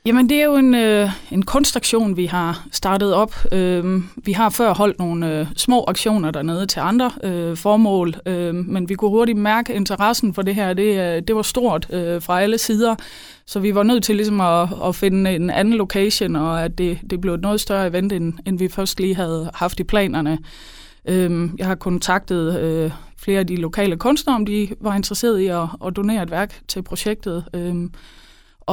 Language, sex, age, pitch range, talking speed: Danish, female, 20-39, 175-210 Hz, 205 wpm